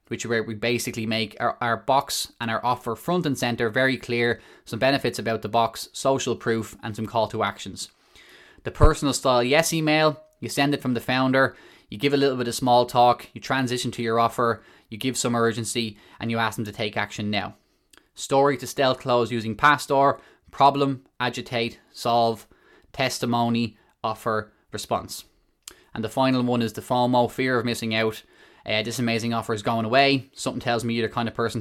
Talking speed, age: 195 wpm, 20-39